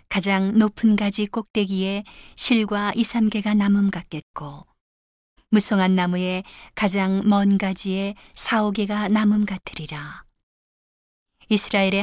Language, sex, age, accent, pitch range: Korean, female, 40-59, native, 185-210 Hz